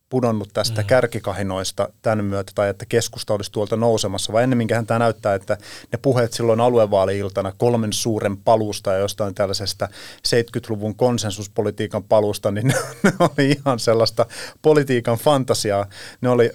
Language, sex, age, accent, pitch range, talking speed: Finnish, male, 30-49, native, 105-135 Hz, 140 wpm